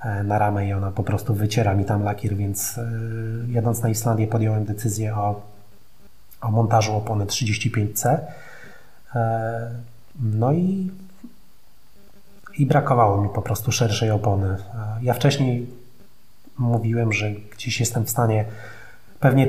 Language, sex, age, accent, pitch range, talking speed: Polish, male, 30-49, native, 105-125 Hz, 120 wpm